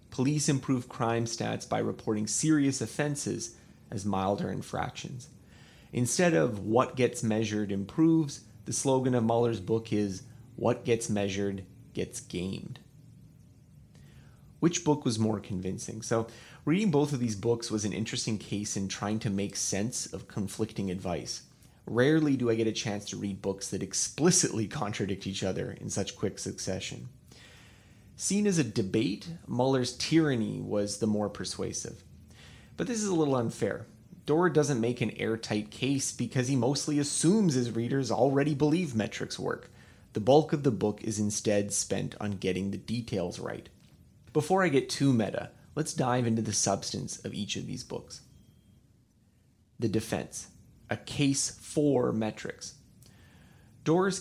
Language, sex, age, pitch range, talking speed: English, male, 30-49, 105-140 Hz, 150 wpm